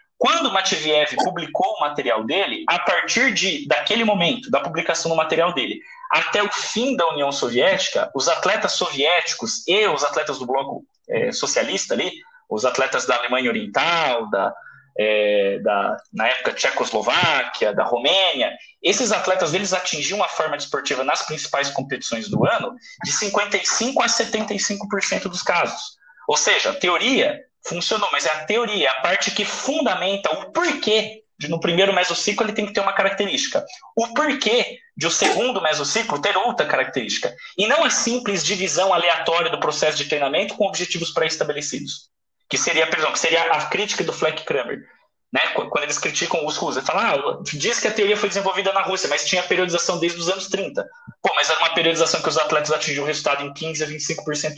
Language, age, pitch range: Portuguese, 20-39, 165-235 Hz